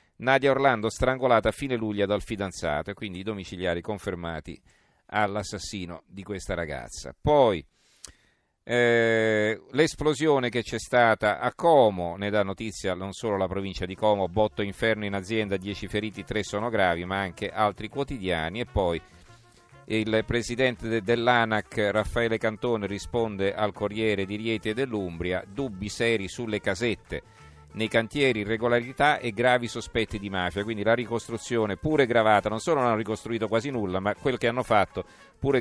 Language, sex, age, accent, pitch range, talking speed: Italian, male, 40-59, native, 100-120 Hz, 155 wpm